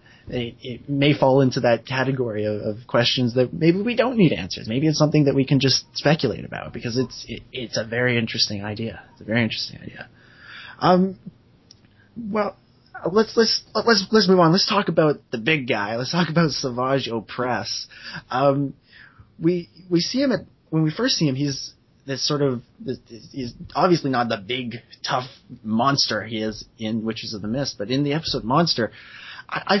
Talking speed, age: 190 wpm, 20-39